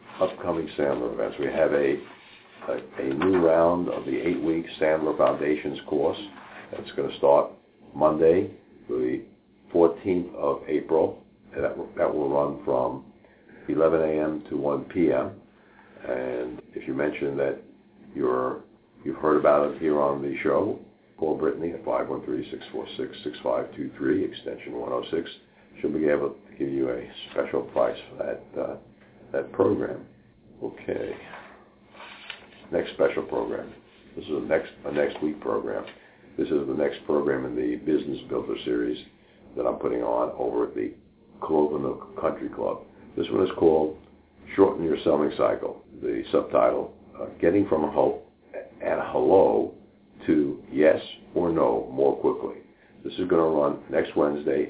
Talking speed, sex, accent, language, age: 145 wpm, male, American, English, 60-79